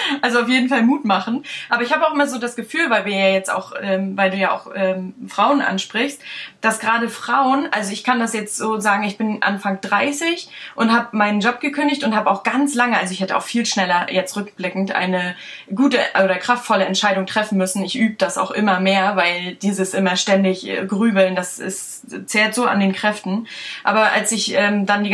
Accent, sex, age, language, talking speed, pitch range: German, female, 20-39, German, 210 wpm, 195-240 Hz